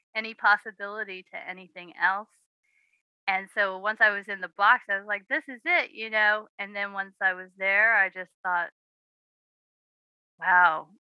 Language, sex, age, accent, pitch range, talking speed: English, female, 20-39, American, 185-225 Hz, 165 wpm